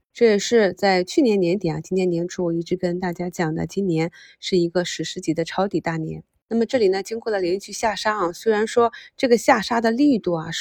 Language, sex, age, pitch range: Chinese, female, 20-39, 175-220 Hz